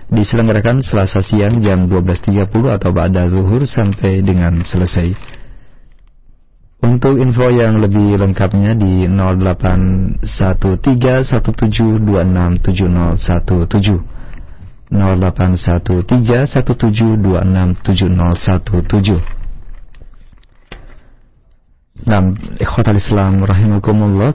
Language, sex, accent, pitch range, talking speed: Indonesian, male, native, 95-110 Hz, 60 wpm